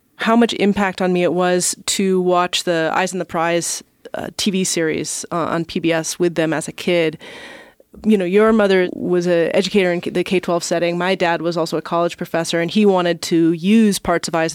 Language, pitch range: English, 170-205 Hz